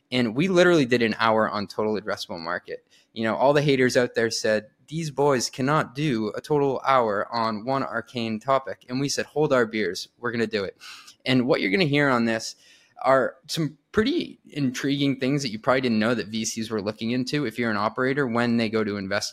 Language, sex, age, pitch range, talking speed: English, male, 20-39, 110-135 Hz, 225 wpm